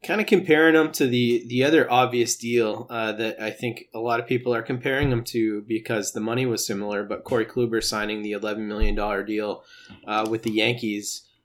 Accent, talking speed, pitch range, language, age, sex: American, 210 wpm, 110-135 Hz, English, 30-49, male